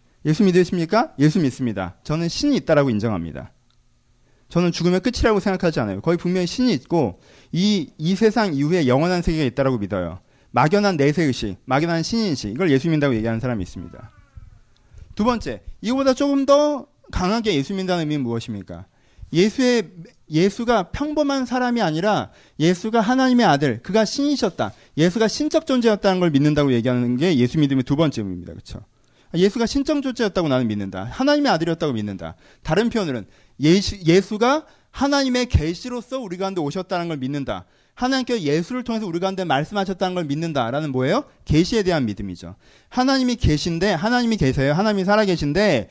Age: 30-49